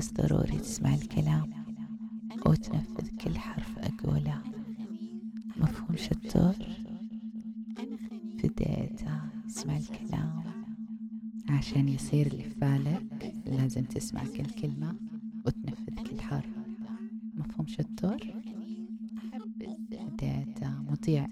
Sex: female